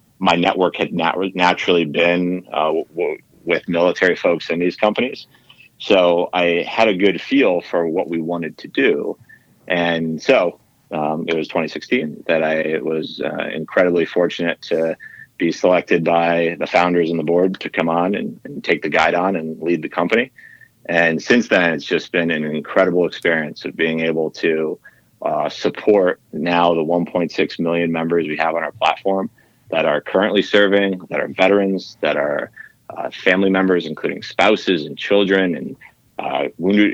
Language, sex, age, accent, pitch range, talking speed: English, male, 30-49, American, 85-95 Hz, 165 wpm